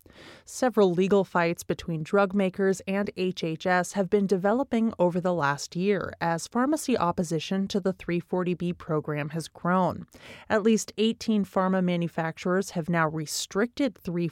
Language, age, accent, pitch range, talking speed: English, 30-49, American, 165-205 Hz, 135 wpm